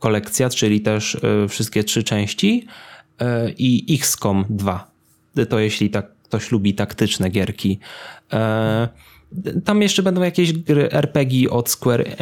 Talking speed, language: 120 wpm, Polish